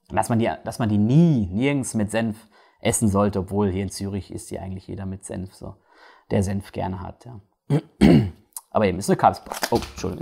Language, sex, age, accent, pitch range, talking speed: German, male, 30-49, German, 110-150 Hz, 205 wpm